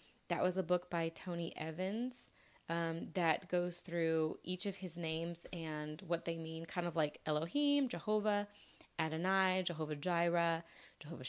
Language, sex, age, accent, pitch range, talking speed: English, female, 20-39, American, 170-225 Hz, 150 wpm